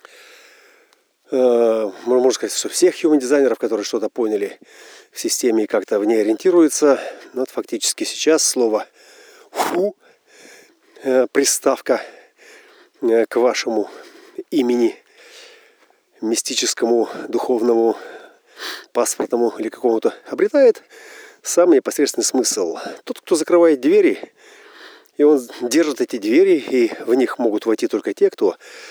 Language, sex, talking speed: Russian, male, 105 wpm